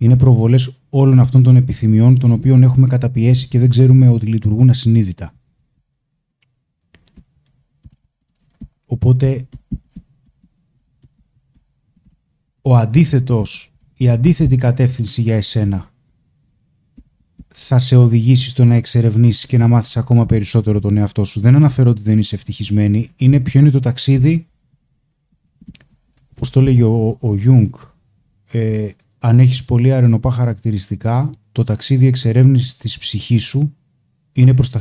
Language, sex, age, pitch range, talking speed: Greek, male, 20-39, 115-135 Hz, 120 wpm